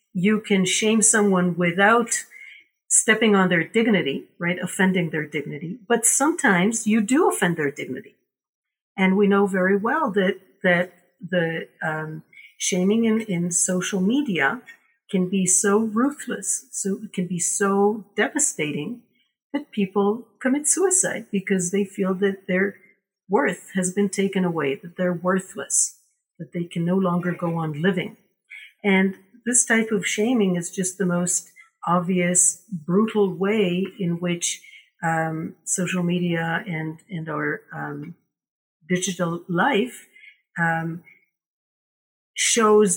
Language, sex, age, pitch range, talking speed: English, female, 50-69, 175-215 Hz, 130 wpm